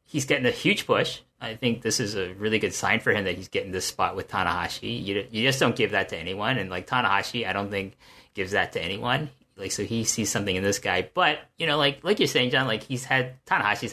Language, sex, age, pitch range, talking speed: English, male, 30-49, 100-130 Hz, 260 wpm